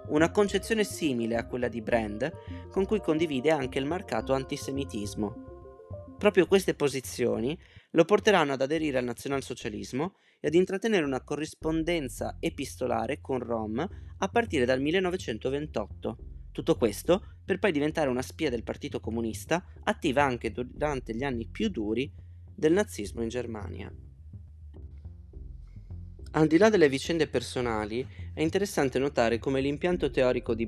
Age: 20-39